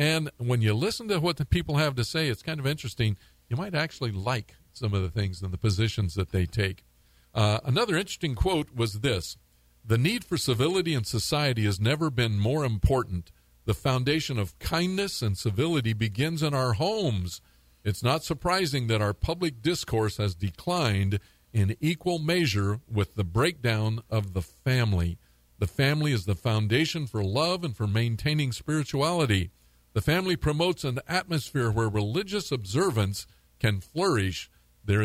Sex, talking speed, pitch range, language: male, 165 wpm, 100-145 Hz, English